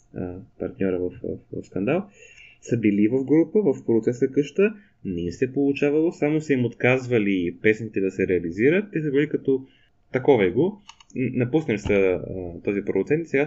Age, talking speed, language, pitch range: 20-39, 160 wpm, Bulgarian, 105-145 Hz